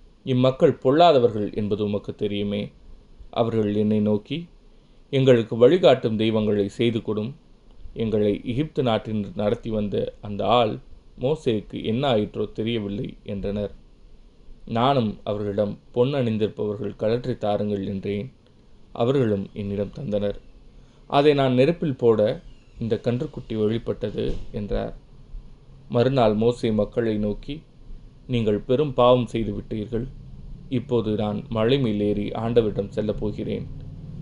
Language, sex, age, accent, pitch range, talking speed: Tamil, male, 20-39, native, 105-125 Hz, 95 wpm